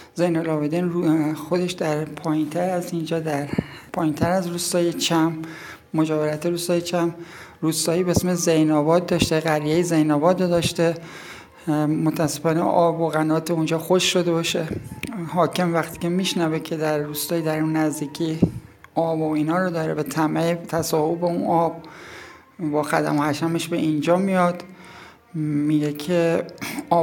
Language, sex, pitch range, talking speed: Persian, male, 155-175 Hz, 135 wpm